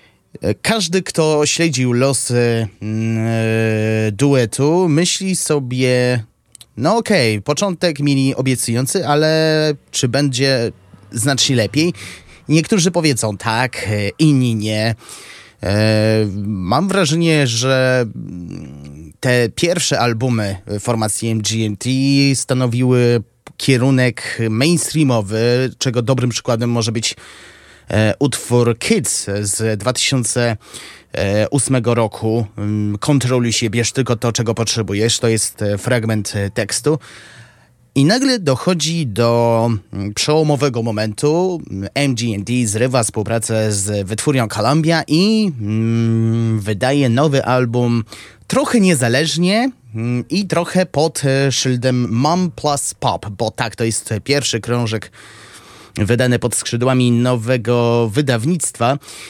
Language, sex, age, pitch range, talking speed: Polish, male, 30-49, 110-150 Hz, 95 wpm